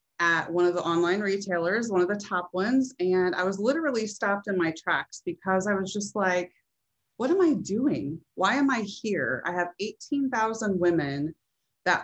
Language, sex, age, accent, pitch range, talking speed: English, female, 30-49, American, 160-200 Hz, 185 wpm